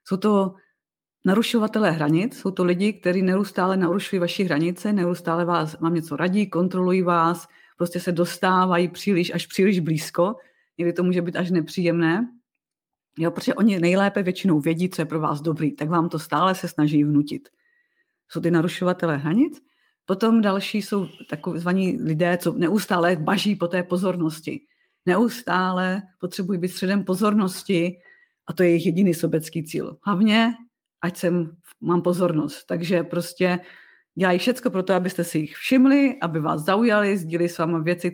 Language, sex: Czech, female